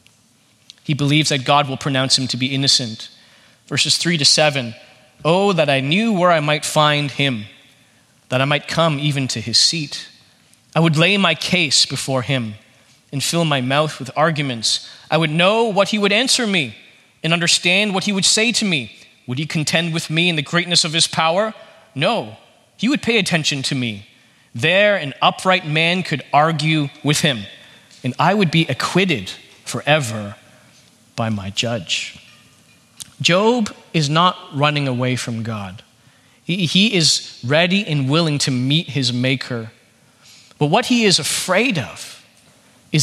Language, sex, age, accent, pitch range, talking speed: English, male, 30-49, American, 130-185 Hz, 165 wpm